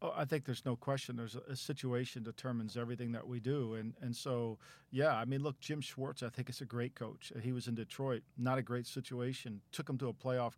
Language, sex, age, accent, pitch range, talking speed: English, male, 50-69, American, 120-140 Hz, 245 wpm